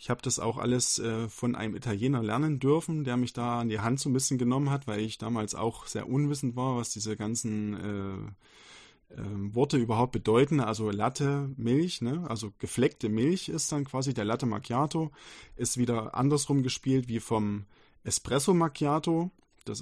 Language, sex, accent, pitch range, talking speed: German, male, German, 110-135 Hz, 170 wpm